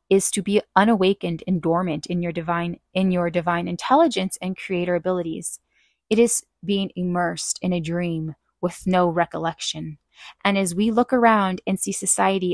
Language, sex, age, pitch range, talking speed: English, female, 20-39, 175-220 Hz, 165 wpm